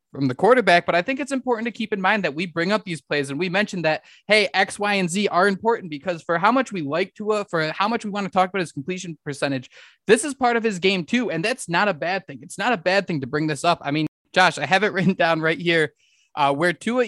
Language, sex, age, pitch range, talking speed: English, male, 20-39, 150-200 Hz, 290 wpm